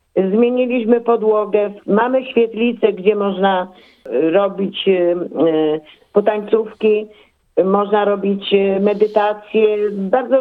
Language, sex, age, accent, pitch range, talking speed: Polish, female, 50-69, native, 185-230 Hz, 70 wpm